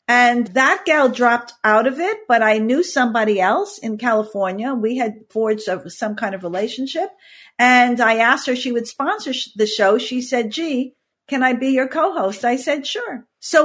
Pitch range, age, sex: 215-275 Hz, 50-69, female